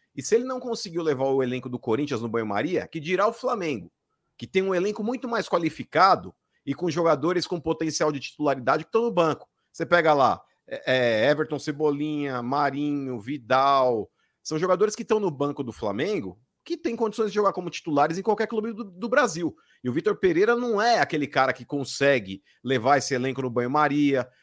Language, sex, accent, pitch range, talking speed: Portuguese, male, Brazilian, 135-190 Hz, 190 wpm